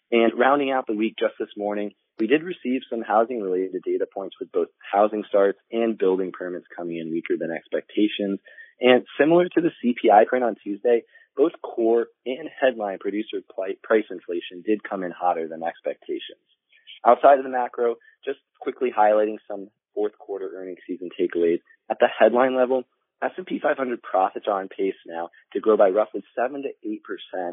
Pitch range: 100-145 Hz